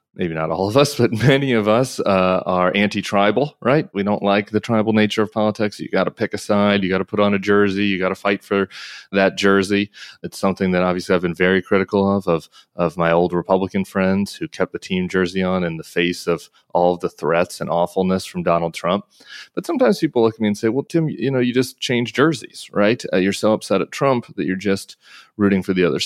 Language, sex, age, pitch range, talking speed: English, male, 30-49, 95-110 Hz, 240 wpm